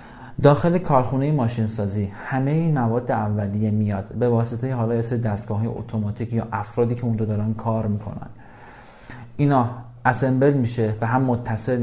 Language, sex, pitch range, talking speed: Persian, male, 110-130 Hz, 145 wpm